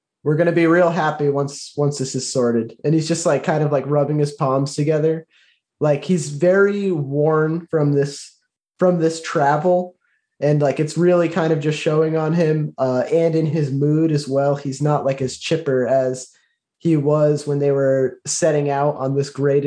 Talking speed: 195 wpm